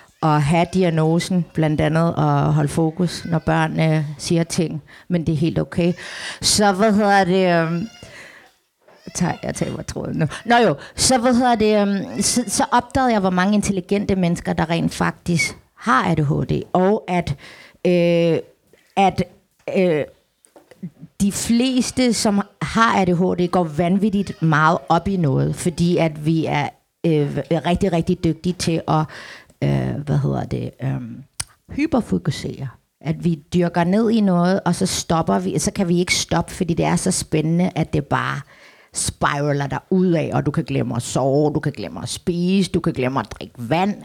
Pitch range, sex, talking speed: 155-190 Hz, female, 165 wpm